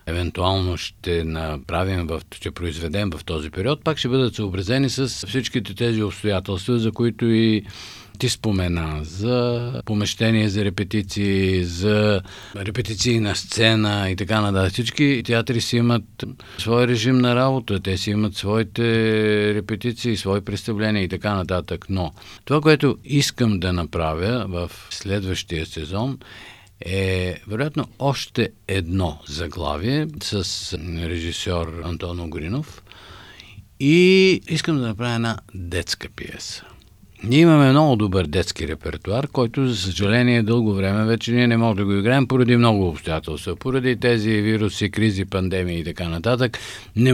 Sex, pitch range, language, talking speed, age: male, 90-120 Hz, Bulgarian, 135 wpm, 50-69